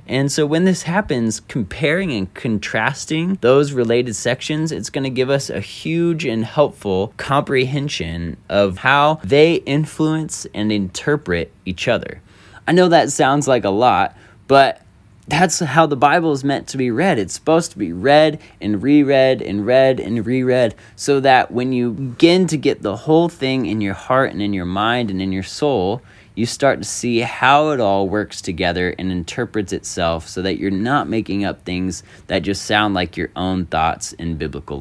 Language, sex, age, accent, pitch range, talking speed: English, male, 20-39, American, 100-150 Hz, 185 wpm